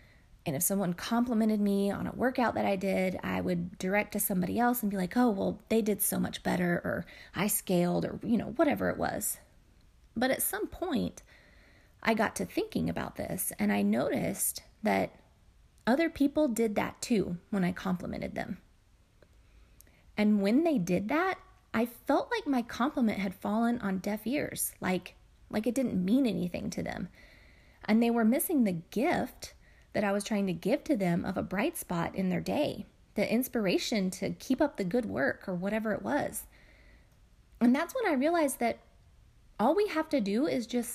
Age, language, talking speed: 30-49, English, 190 wpm